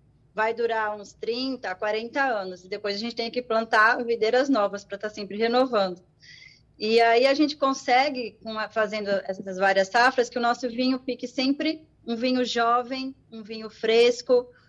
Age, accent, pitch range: 20-39, Brazilian, 215-255 Hz